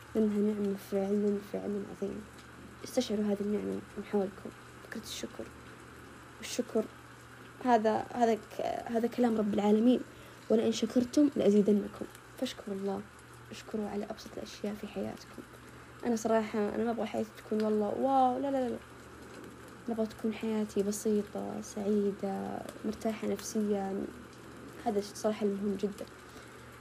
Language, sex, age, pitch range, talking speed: Arabic, female, 20-39, 205-230 Hz, 125 wpm